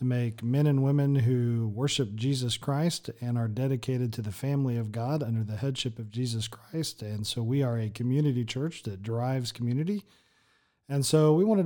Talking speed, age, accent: 190 wpm, 40-59, American